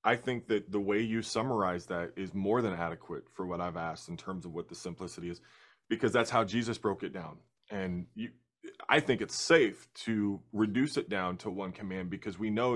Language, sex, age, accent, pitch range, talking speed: English, male, 30-49, American, 100-130 Hz, 215 wpm